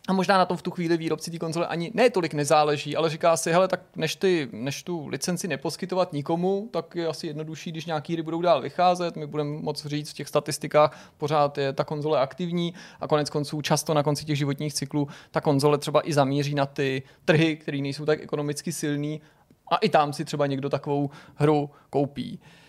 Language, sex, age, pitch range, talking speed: Czech, male, 30-49, 140-165 Hz, 210 wpm